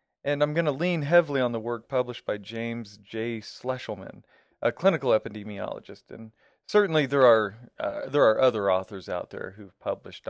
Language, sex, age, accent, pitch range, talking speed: English, male, 40-59, American, 100-130 Hz, 175 wpm